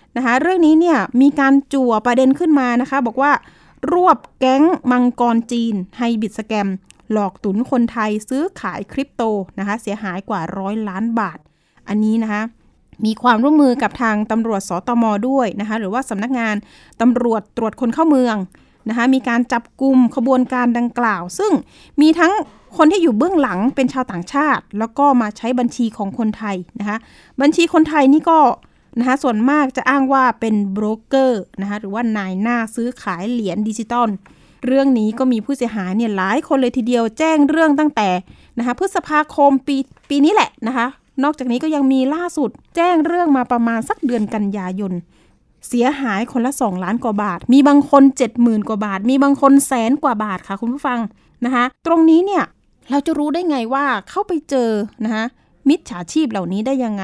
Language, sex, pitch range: Thai, female, 215-275 Hz